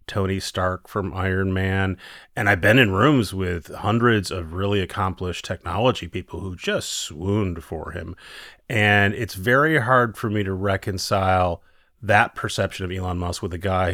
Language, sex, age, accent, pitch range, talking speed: English, male, 30-49, American, 90-115 Hz, 165 wpm